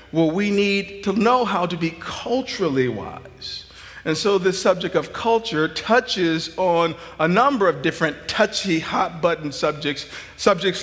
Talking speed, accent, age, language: 150 wpm, American, 50-69, English